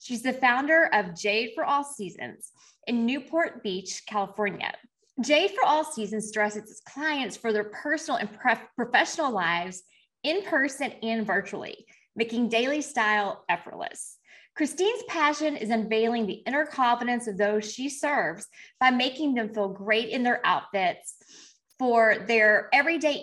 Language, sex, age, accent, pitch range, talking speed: English, female, 20-39, American, 210-290 Hz, 145 wpm